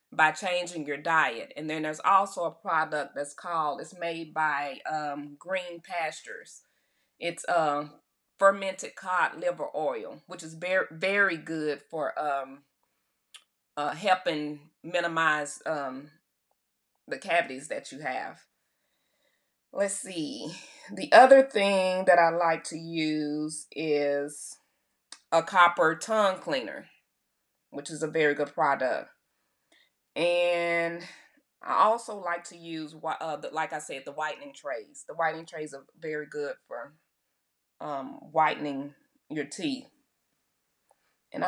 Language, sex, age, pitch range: English, female, 30-49, 155-195 Hz